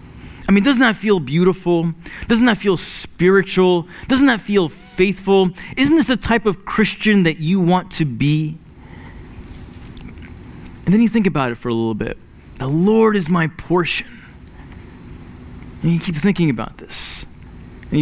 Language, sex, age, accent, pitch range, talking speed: English, male, 30-49, American, 135-190 Hz, 155 wpm